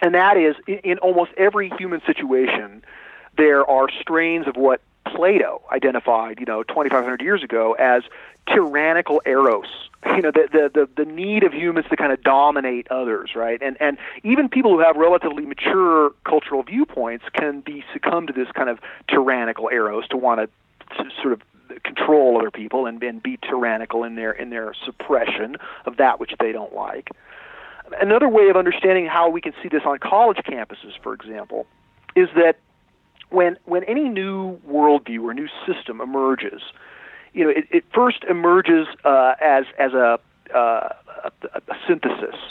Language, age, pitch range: English, 40-59, 135-185 Hz